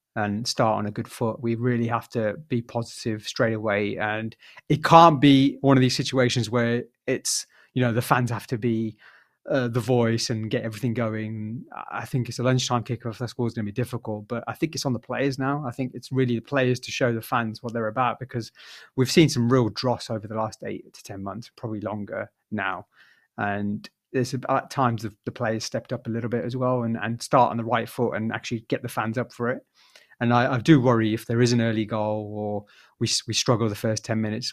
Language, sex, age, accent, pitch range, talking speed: English, male, 30-49, British, 110-125 Hz, 230 wpm